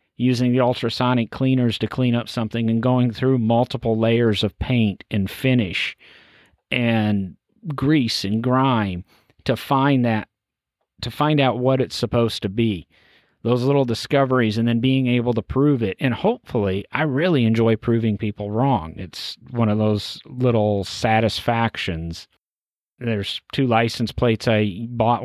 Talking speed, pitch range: 145 wpm, 110-130 Hz